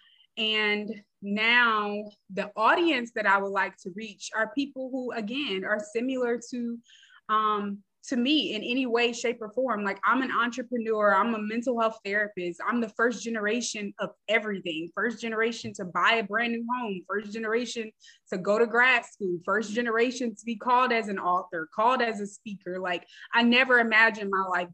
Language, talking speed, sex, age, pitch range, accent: English, 180 wpm, female, 20-39, 195-240 Hz, American